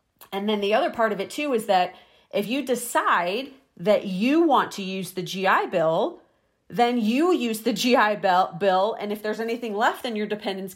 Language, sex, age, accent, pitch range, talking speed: English, female, 40-59, American, 185-245 Hz, 195 wpm